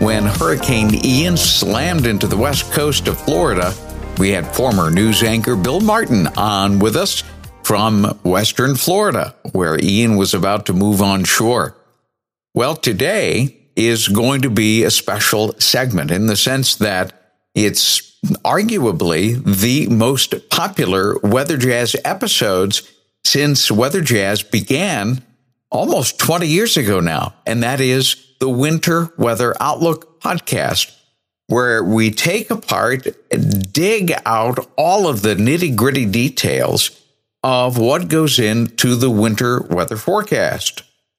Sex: male